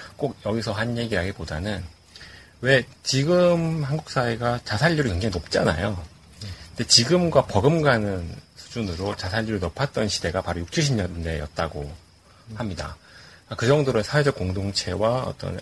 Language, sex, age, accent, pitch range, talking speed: English, male, 40-59, Korean, 85-120 Hz, 105 wpm